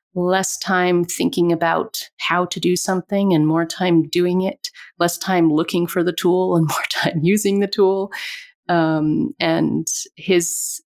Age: 30-49